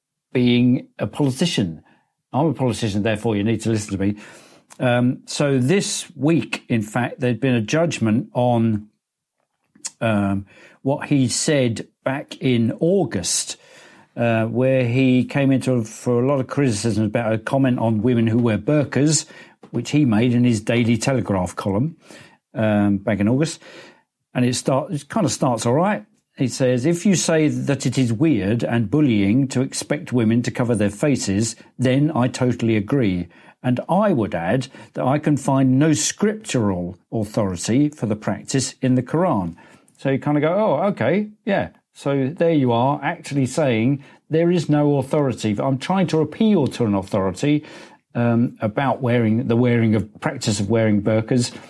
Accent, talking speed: British, 165 wpm